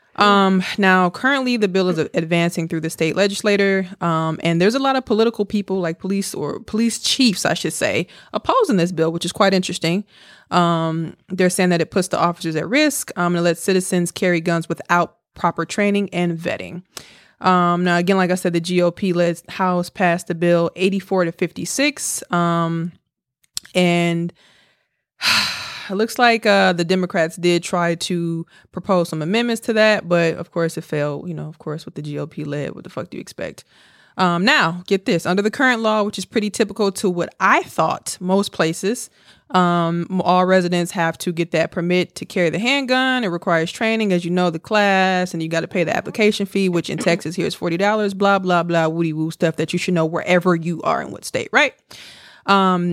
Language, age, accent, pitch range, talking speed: English, 20-39, American, 170-200 Hz, 200 wpm